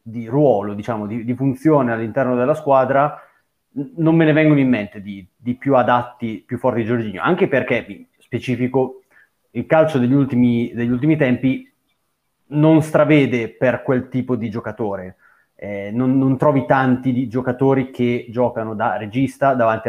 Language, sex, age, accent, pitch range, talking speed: Italian, male, 30-49, native, 115-135 Hz, 160 wpm